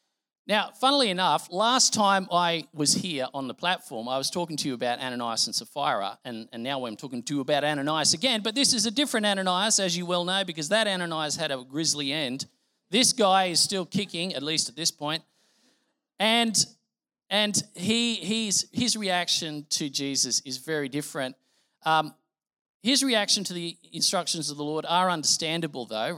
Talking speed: 185 wpm